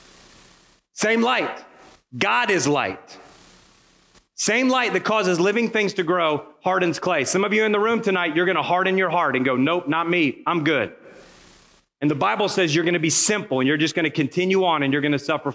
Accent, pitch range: American, 150-195 Hz